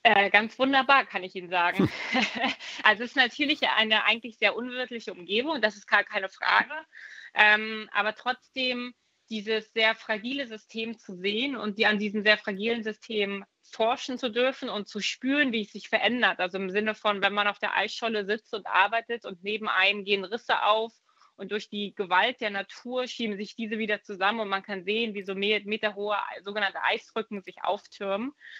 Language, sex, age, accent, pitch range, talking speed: German, female, 20-39, German, 200-230 Hz, 185 wpm